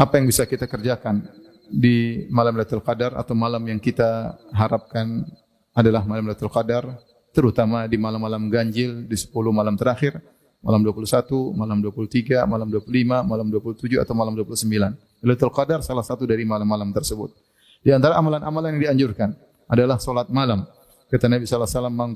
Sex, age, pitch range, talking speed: male, 30-49, 110-125 Hz, 150 wpm